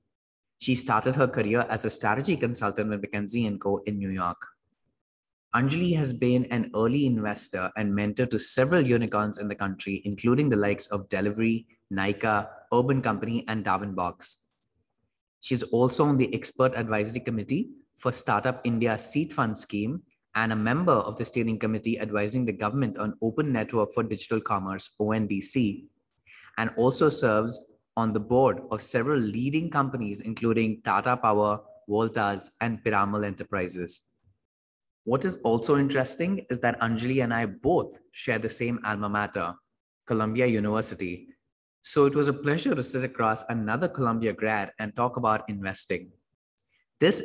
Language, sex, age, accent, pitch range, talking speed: English, male, 20-39, Indian, 105-130 Hz, 150 wpm